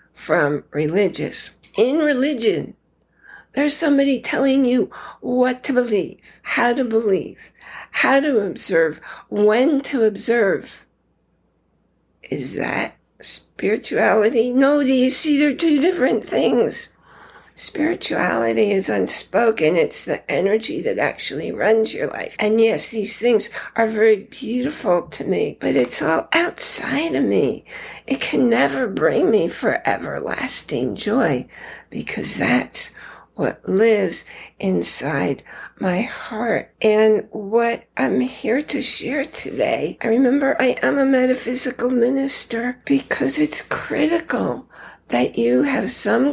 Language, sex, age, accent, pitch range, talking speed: English, female, 60-79, American, 220-280 Hz, 120 wpm